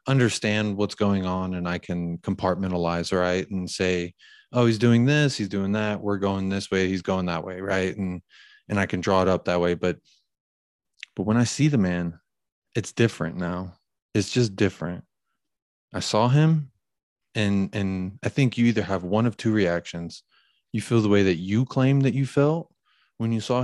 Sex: male